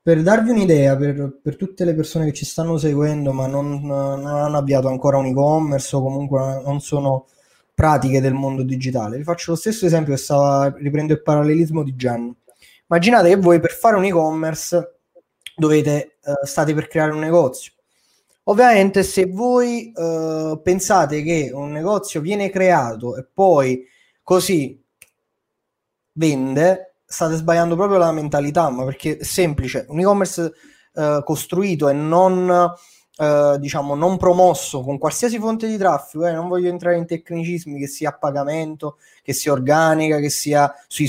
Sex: male